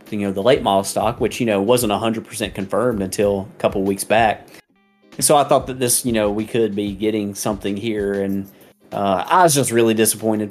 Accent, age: American, 30-49